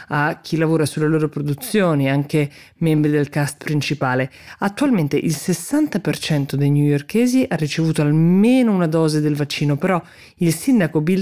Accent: native